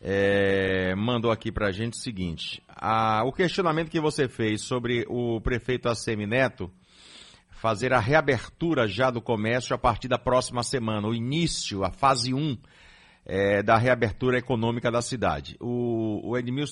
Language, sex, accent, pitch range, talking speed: Portuguese, male, Brazilian, 110-140 Hz, 145 wpm